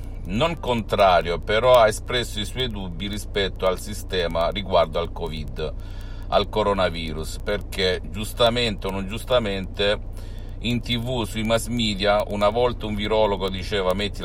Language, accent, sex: Italian, native, male